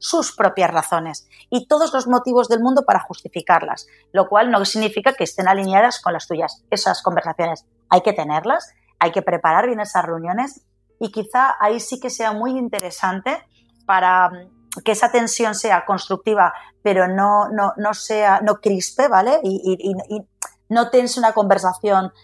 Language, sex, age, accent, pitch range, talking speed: Spanish, female, 30-49, Spanish, 180-215 Hz, 165 wpm